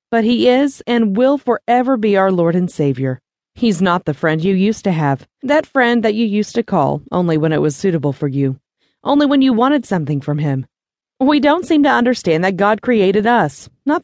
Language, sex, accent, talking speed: English, female, American, 215 wpm